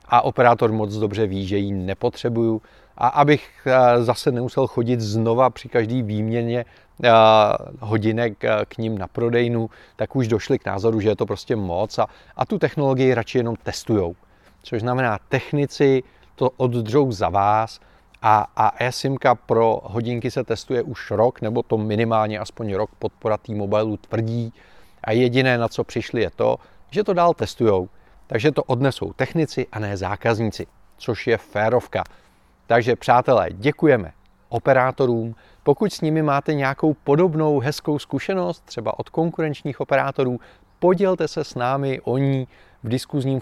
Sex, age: male, 30-49